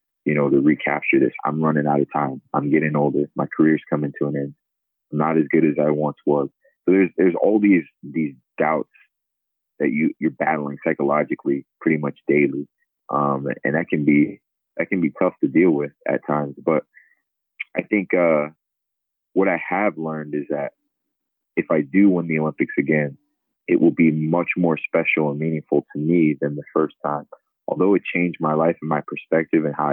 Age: 30-49